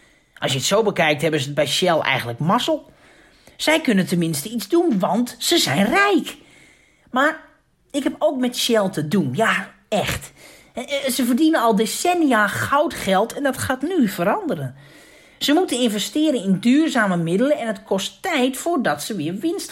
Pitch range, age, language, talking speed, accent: 180-270 Hz, 40-59, Dutch, 165 wpm, Dutch